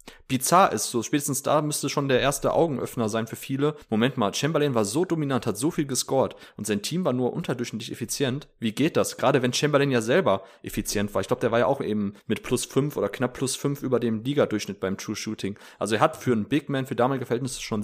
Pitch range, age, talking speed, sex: 115-140 Hz, 30-49, 240 wpm, male